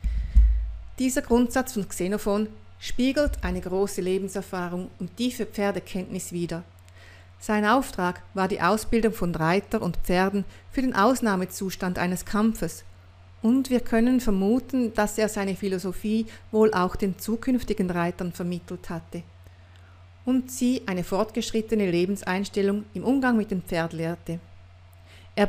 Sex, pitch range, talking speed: female, 170-220 Hz, 125 wpm